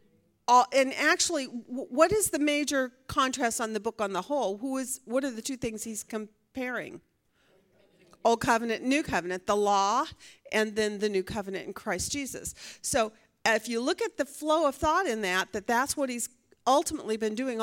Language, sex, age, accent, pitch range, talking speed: English, female, 40-59, American, 220-290 Hz, 185 wpm